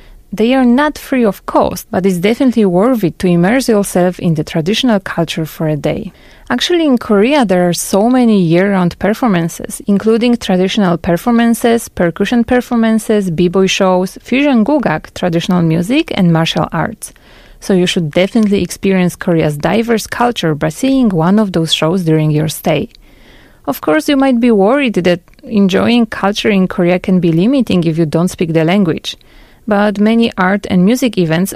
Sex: female